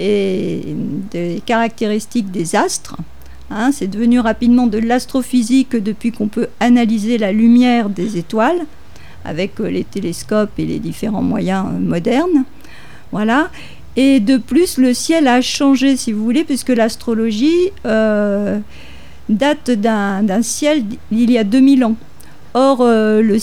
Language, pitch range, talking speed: French, 220-255 Hz, 135 wpm